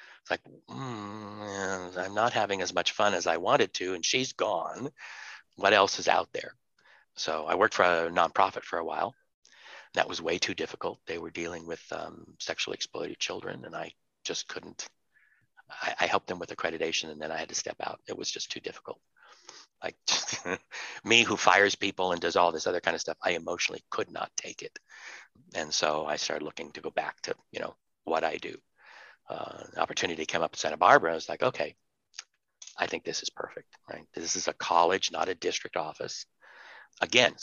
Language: English